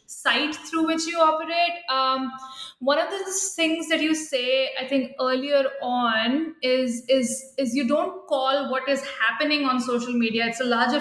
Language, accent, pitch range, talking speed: English, Indian, 235-280 Hz, 175 wpm